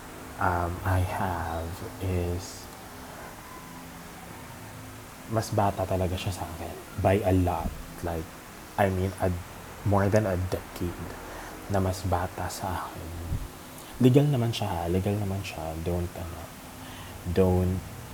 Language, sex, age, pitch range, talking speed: Filipino, male, 20-39, 85-95 Hz, 110 wpm